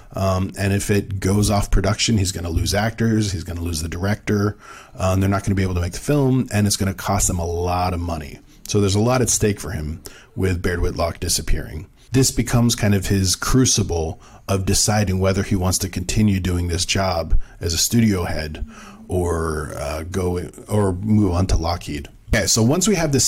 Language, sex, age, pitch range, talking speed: English, male, 40-59, 95-115 Hz, 220 wpm